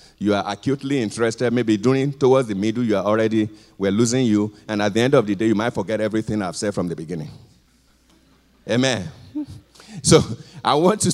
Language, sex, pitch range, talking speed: English, male, 110-155 Hz, 195 wpm